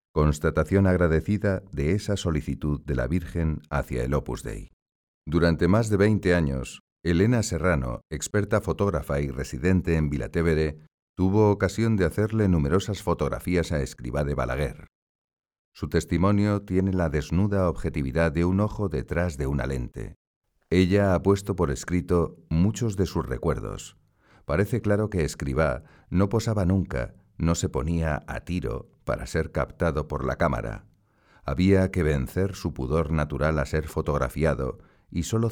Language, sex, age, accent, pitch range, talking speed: Spanish, male, 40-59, Spanish, 75-95 Hz, 145 wpm